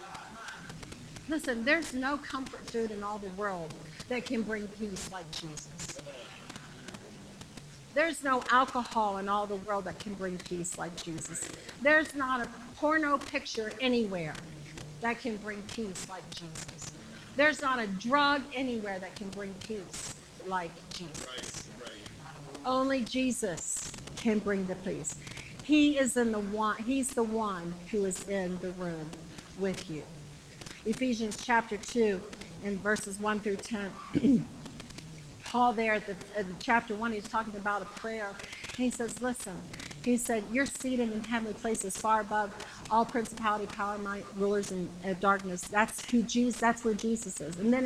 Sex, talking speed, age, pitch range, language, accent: female, 155 wpm, 50-69, 185-245 Hz, English, American